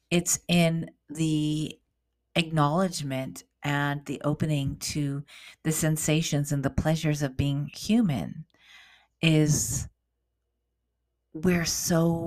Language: English